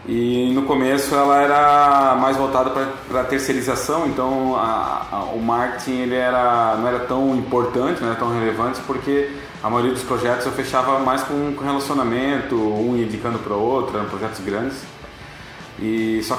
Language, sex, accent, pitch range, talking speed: Portuguese, male, Brazilian, 120-145 Hz, 145 wpm